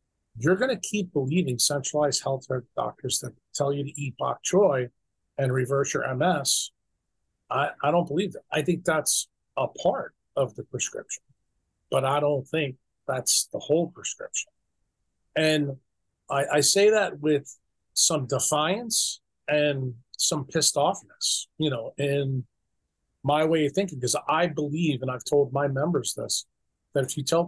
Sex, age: male, 40-59